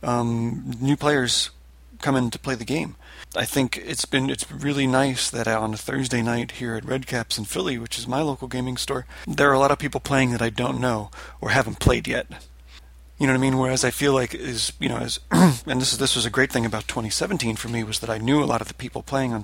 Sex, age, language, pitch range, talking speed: male, 30-49, English, 110-130 Hz, 260 wpm